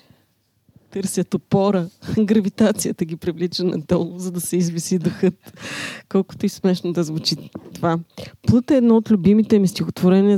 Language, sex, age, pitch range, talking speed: Bulgarian, female, 20-39, 155-185 Hz, 140 wpm